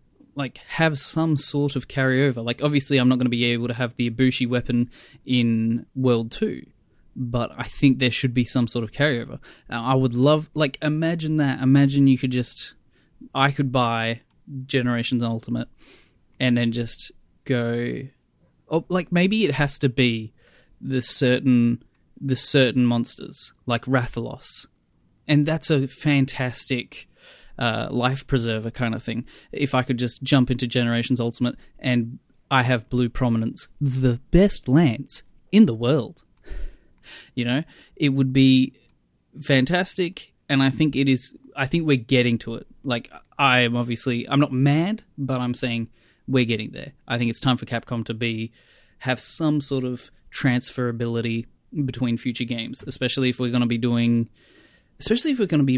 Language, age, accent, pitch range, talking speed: English, 10-29, Australian, 120-140 Hz, 165 wpm